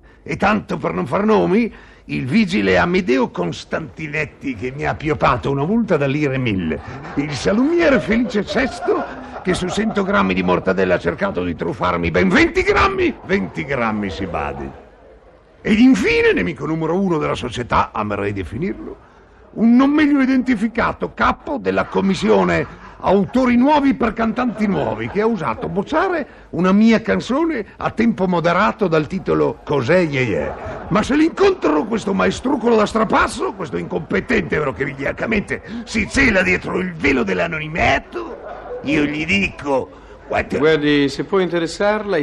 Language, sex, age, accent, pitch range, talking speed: Italian, male, 50-69, native, 145-230 Hz, 145 wpm